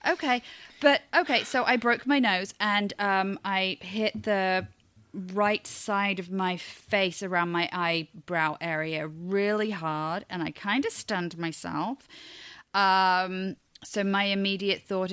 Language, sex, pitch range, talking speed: English, female, 170-220 Hz, 140 wpm